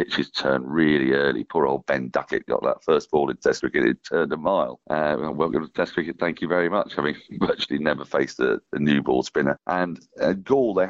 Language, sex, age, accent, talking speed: English, male, 40-59, British, 225 wpm